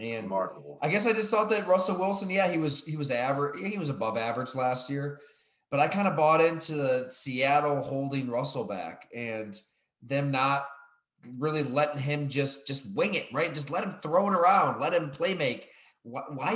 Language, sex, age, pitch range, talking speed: English, male, 20-39, 130-175 Hz, 200 wpm